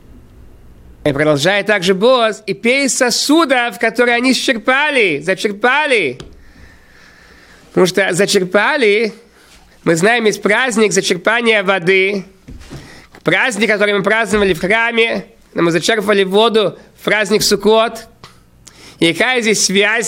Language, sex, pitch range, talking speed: Russian, male, 205-285 Hz, 110 wpm